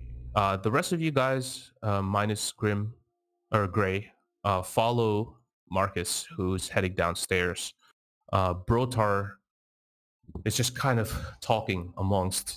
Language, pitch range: English, 90-125 Hz